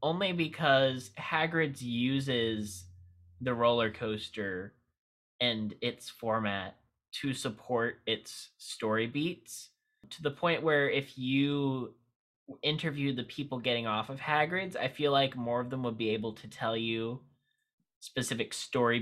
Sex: male